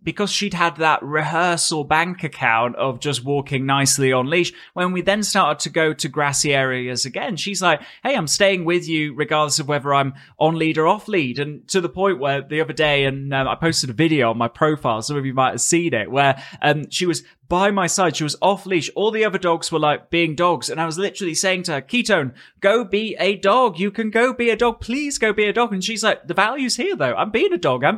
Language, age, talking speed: English, 20-39, 250 wpm